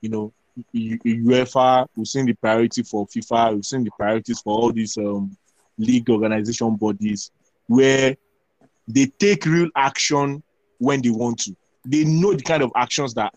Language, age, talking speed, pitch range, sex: English, 20-39, 165 wpm, 115-150 Hz, male